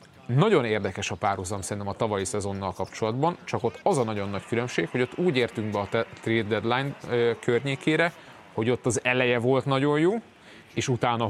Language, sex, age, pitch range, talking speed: Hungarian, male, 30-49, 105-135 Hz, 180 wpm